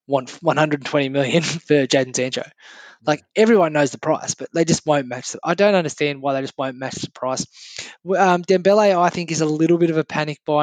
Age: 20-39